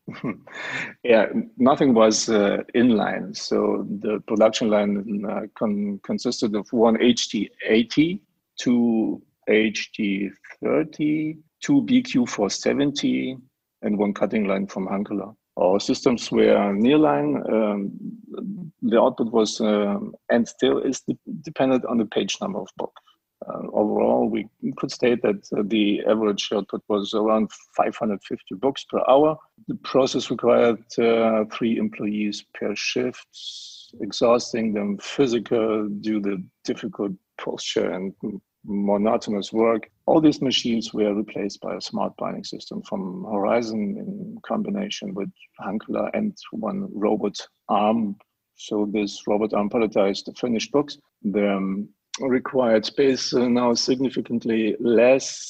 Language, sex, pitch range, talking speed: English, male, 105-140 Hz, 130 wpm